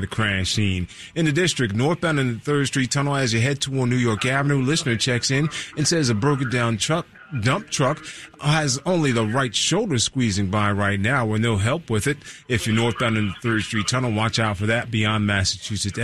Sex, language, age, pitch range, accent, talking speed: male, English, 30-49, 115-150 Hz, American, 215 wpm